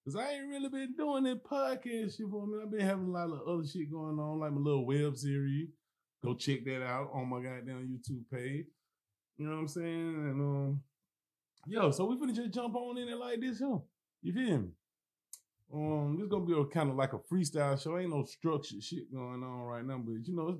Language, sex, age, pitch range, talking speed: English, male, 20-39, 130-175 Hz, 235 wpm